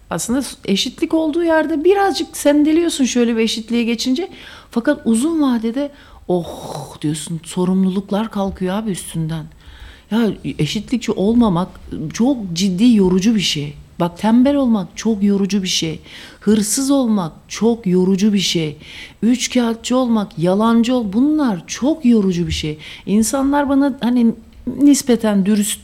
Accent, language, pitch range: Turkish, English, 185-280 Hz